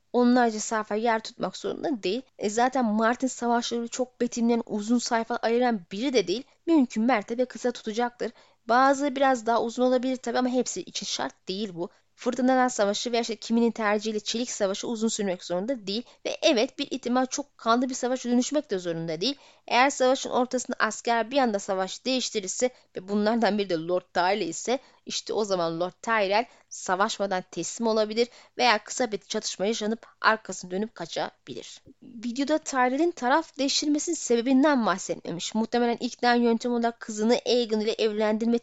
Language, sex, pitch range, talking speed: Turkish, female, 210-255 Hz, 160 wpm